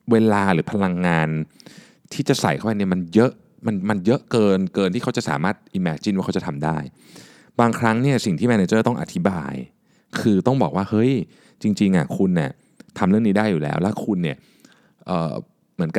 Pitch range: 90-125 Hz